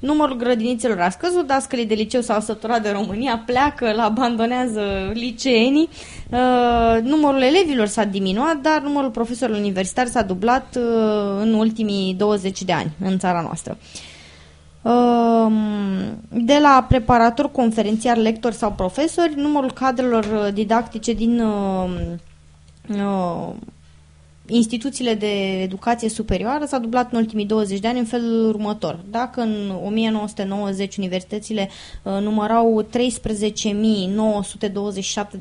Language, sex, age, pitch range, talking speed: Romanian, female, 20-39, 205-255 Hz, 110 wpm